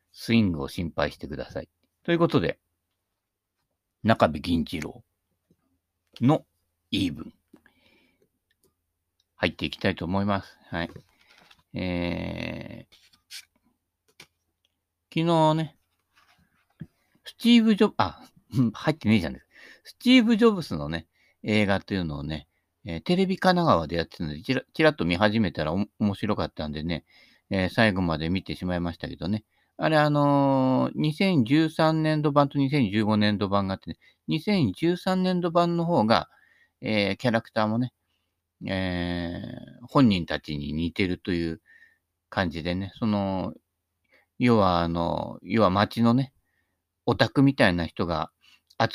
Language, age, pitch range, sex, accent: Japanese, 50-69, 85-140 Hz, male, native